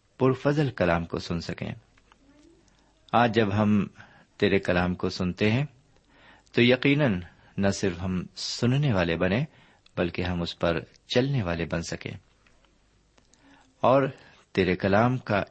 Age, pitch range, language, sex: 50-69, 95-125 Hz, Urdu, male